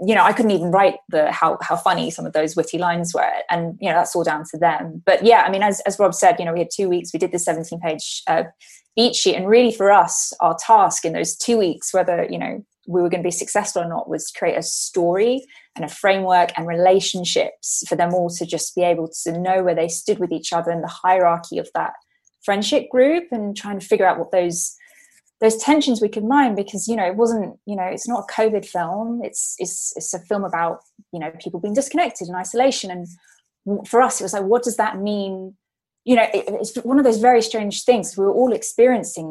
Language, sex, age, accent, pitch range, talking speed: English, female, 20-39, British, 175-225 Hz, 245 wpm